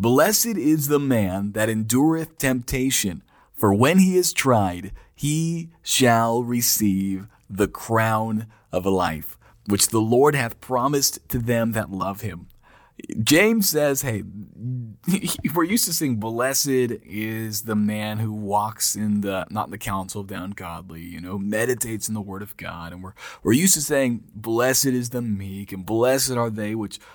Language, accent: English, American